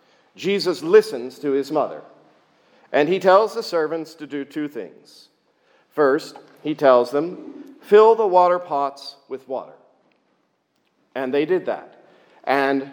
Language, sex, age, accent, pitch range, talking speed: English, male, 50-69, American, 135-165 Hz, 135 wpm